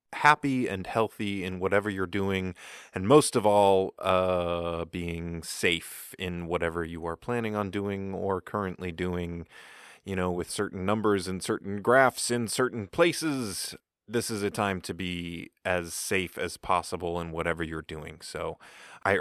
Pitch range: 85-105 Hz